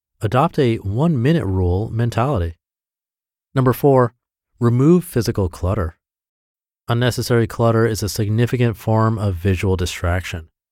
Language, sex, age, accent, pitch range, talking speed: English, male, 30-49, American, 95-130 Hz, 105 wpm